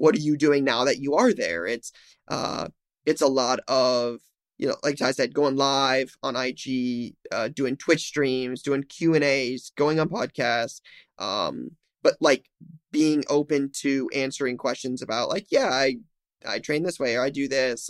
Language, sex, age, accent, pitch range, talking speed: English, male, 20-39, American, 135-160 Hz, 185 wpm